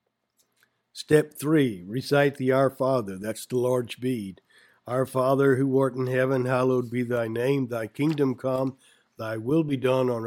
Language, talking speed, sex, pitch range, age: English, 165 wpm, male, 125-135 Hz, 60-79